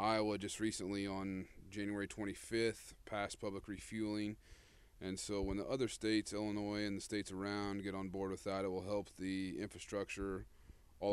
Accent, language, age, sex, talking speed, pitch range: American, English, 30-49, male, 165 wpm, 95-105 Hz